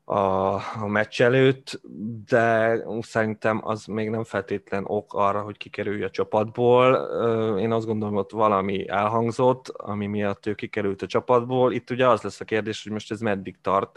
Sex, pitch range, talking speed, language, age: male, 105-120 Hz, 170 wpm, Hungarian, 20-39